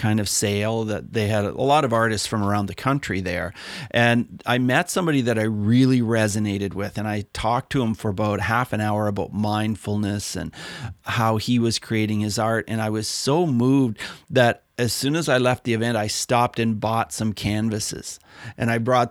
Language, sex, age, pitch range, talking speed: English, male, 40-59, 110-125 Hz, 205 wpm